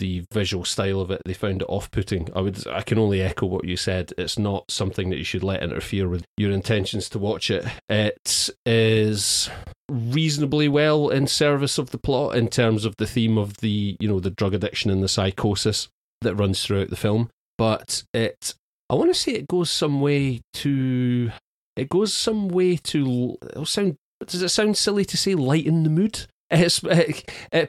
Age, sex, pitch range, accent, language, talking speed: 30-49, male, 95-125 Hz, British, English, 195 wpm